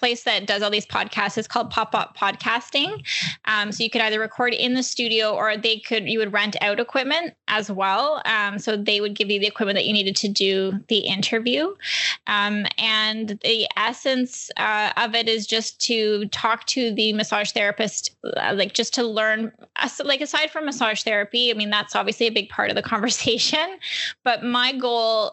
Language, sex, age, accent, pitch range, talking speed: English, female, 10-29, American, 205-240 Hz, 195 wpm